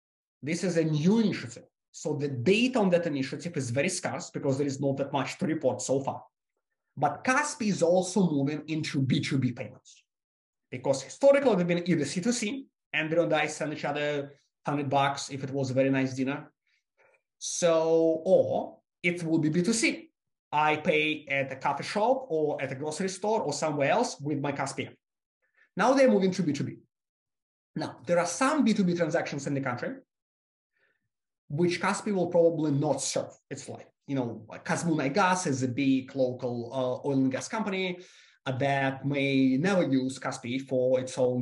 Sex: male